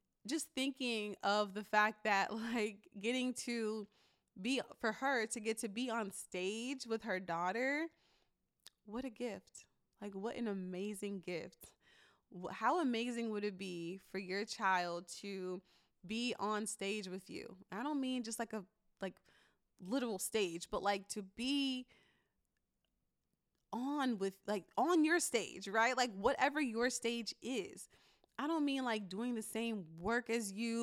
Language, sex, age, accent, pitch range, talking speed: English, female, 20-39, American, 195-240 Hz, 150 wpm